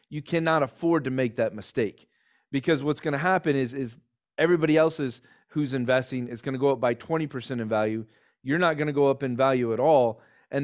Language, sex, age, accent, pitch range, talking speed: English, male, 30-49, American, 120-140 Hz, 215 wpm